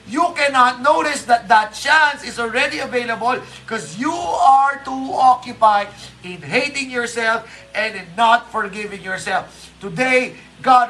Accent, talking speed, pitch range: native, 130 wpm, 215-275 Hz